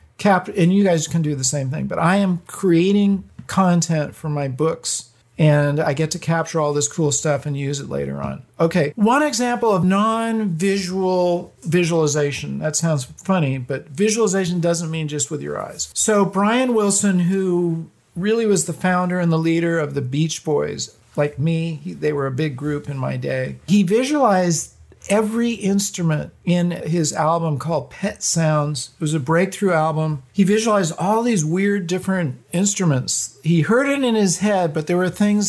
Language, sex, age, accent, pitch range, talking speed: English, male, 50-69, American, 155-195 Hz, 180 wpm